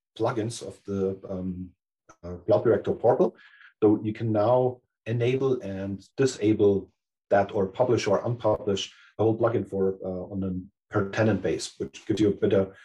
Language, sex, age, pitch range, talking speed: English, male, 40-59, 95-120 Hz, 165 wpm